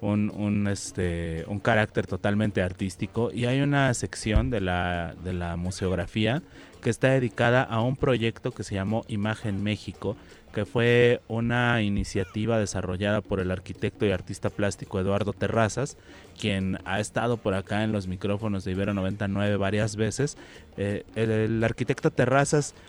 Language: Spanish